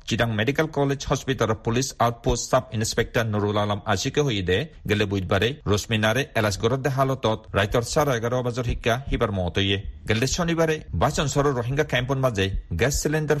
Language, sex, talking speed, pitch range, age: Bengali, male, 150 wpm, 105-140 Hz, 40-59